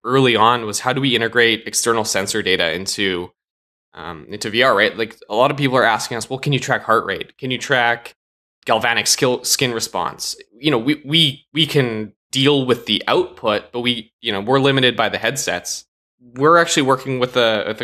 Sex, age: male, 20-39